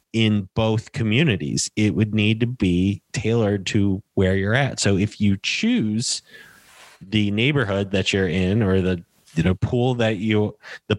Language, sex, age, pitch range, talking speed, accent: English, male, 30-49, 100-120 Hz, 155 wpm, American